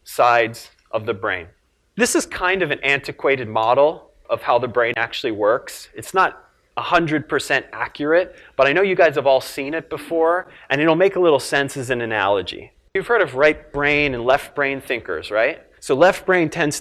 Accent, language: American, English